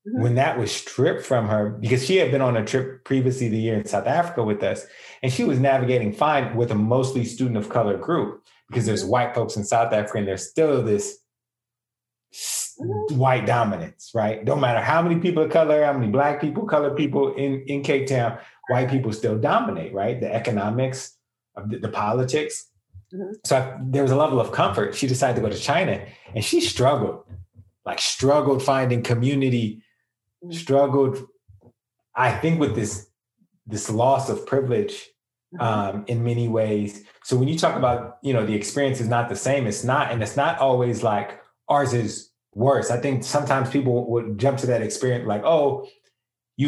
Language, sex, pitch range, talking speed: English, male, 115-135 Hz, 185 wpm